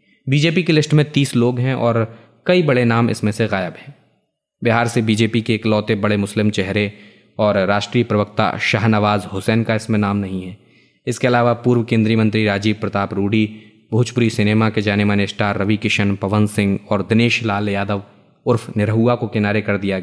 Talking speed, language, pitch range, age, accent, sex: 185 wpm, Hindi, 105-130 Hz, 20-39, native, male